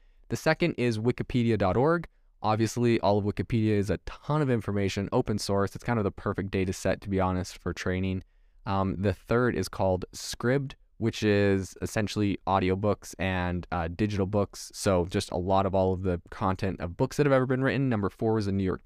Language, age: English, 20-39